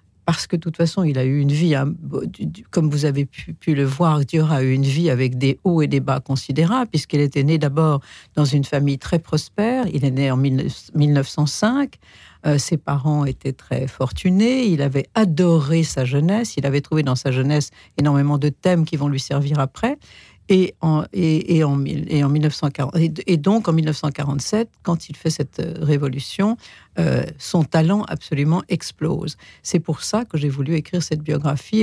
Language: French